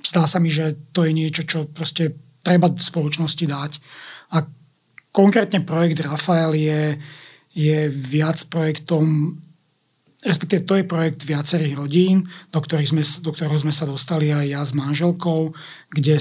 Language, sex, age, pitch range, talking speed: Slovak, male, 60-79, 150-165 Hz, 145 wpm